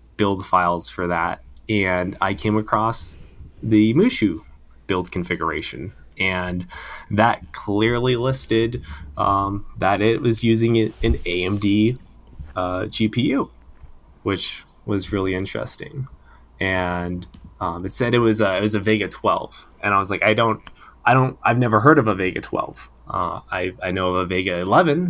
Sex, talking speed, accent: male, 150 wpm, American